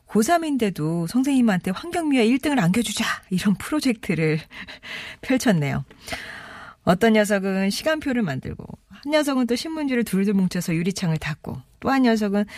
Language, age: Korean, 40-59